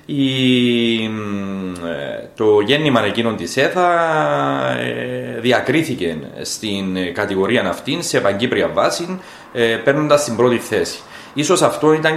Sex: male